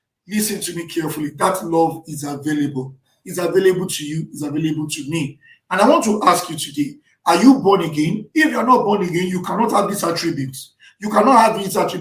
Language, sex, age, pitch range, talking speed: English, male, 50-69, 150-215 Hz, 205 wpm